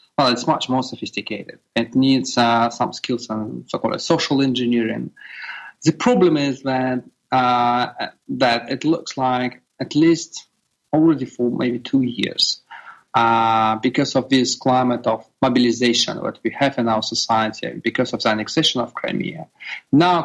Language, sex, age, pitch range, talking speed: English, male, 30-49, 115-135 Hz, 150 wpm